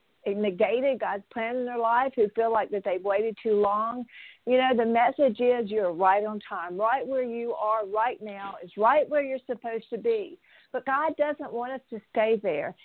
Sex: female